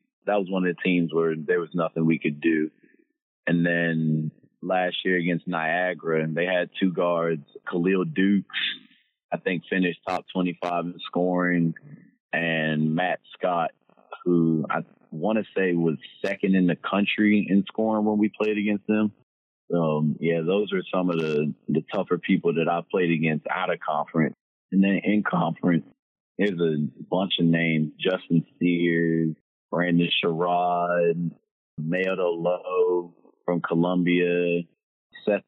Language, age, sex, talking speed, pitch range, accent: English, 30-49, male, 145 wpm, 80-90 Hz, American